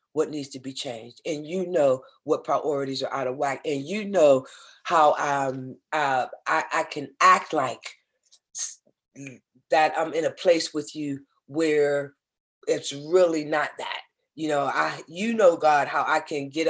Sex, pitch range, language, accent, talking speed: female, 140-185 Hz, English, American, 170 wpm